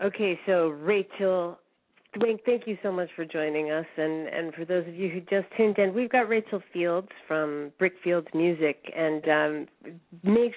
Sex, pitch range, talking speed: female, 155-185 Hz, 175 wpm